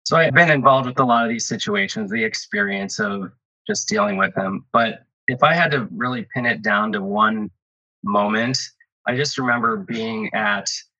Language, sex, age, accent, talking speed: English, male, 20-39, American, 185 wpm